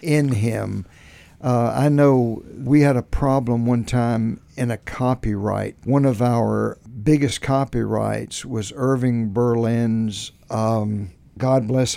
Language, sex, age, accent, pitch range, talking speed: English, male, 60-79, American, 110-130 Hz, 125 wpm